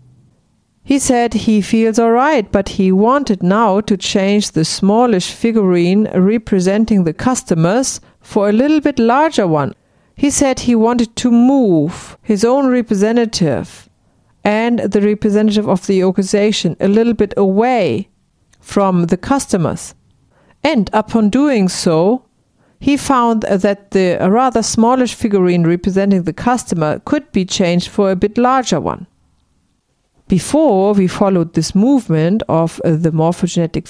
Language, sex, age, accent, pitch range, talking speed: English, female, 50-69, German, 180-235 Hz, 135 wpm